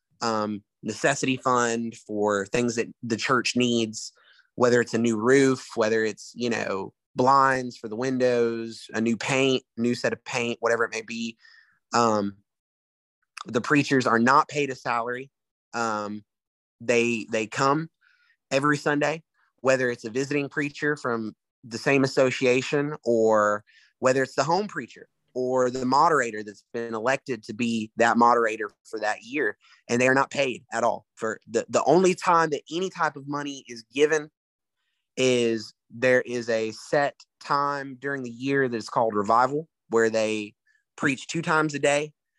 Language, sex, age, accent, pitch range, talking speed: English, male, 30-49, American, 115-135 Hz, 160 wpm